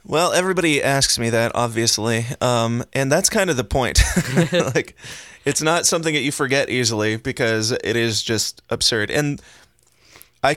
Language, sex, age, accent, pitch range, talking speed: English, male, 20-39, American, 110-135 Hz, 160 wpm